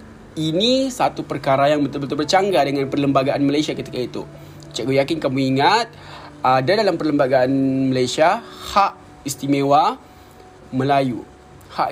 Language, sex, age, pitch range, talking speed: Malay, male, 20-39, 130-155 Hz, 115 wpm